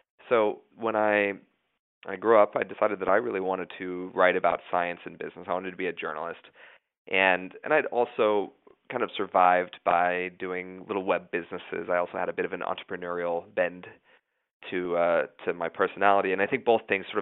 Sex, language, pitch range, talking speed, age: male, English, 90-95 Hz, 195 wpm, 30-49